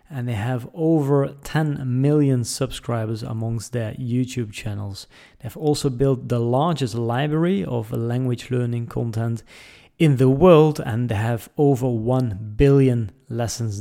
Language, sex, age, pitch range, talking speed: English, male, 30-49, 120-155 Hz, 135 wpm